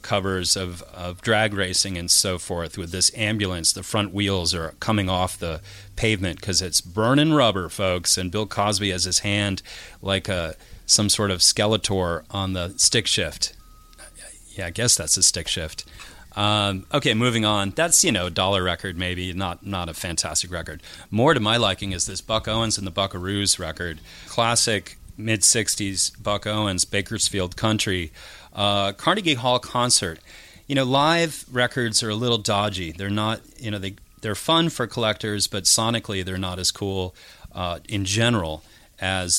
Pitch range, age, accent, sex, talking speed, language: 90-110 Hz, 30-49, American, male, 170 wpm, English